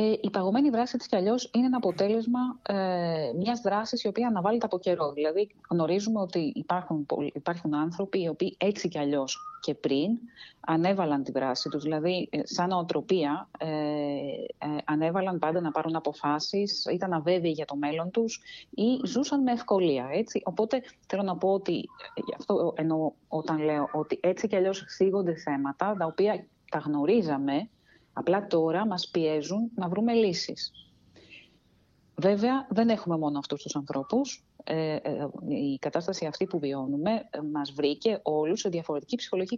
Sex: female